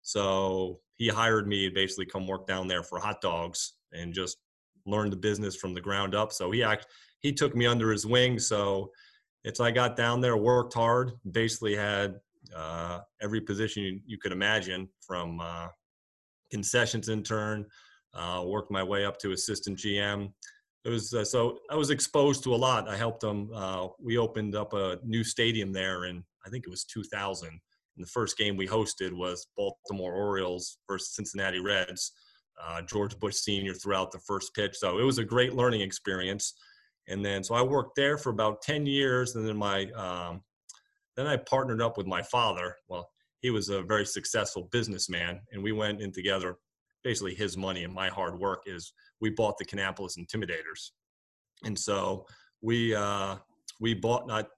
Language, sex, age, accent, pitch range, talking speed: English, male, 30-49, American, 95-115 Hz, 180 wpm